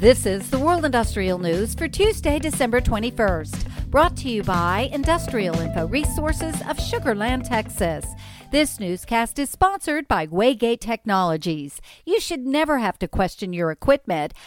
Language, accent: English, American